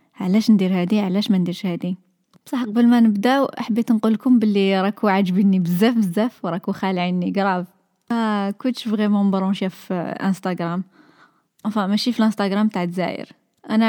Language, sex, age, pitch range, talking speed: Arabic, female, 20-39, 195-245 Hz, 140 wpm